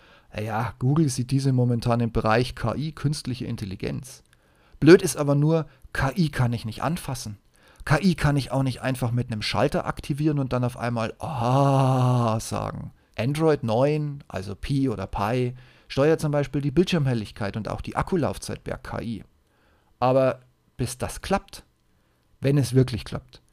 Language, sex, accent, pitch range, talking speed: German, male, German, 115-140 Hz, 155 wpm